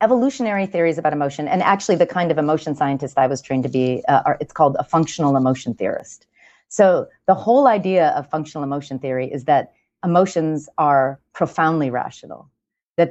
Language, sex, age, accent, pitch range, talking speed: English, female, 30-49, American, 150-210 Hz, 180 wpm